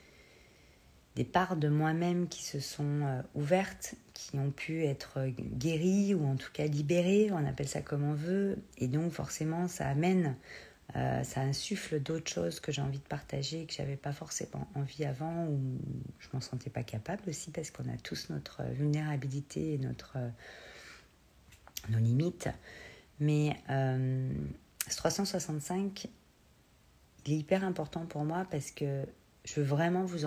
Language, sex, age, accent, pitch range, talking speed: French, female, 40-59, French, 130-160 Hz, 155 wpm